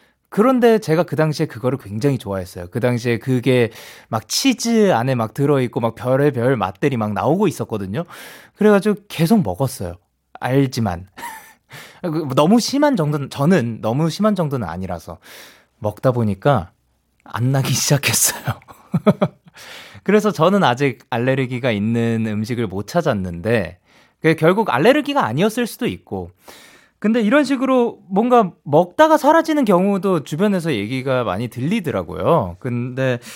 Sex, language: male, Korean